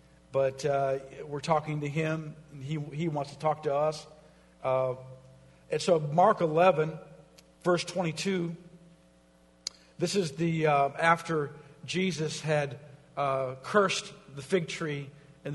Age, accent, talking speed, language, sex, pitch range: 50-69, American, 130 wpm, English, male, 145-180 Hz